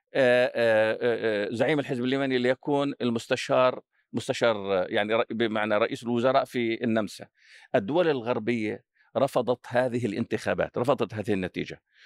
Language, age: Arabic, 50-69